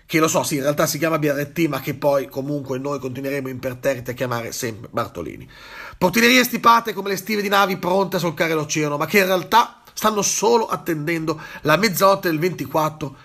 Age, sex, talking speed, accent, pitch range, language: 40-59, male, 190 wpm, native, 145-200 Hz, Italian